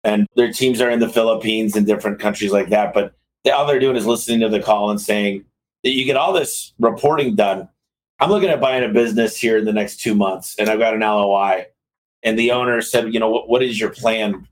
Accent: American